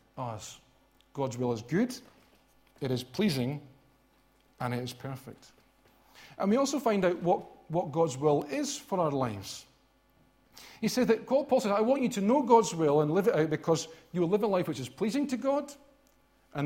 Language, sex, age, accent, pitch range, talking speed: English, male, 40-59, British, 150-215 Hz, 190 wpm